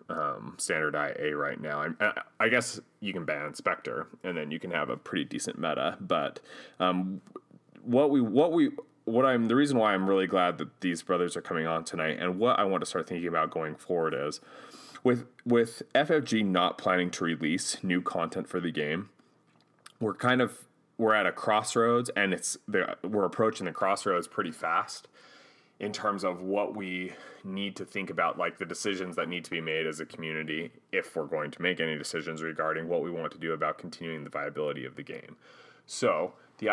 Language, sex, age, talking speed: English, male, 30-49, 195 wpm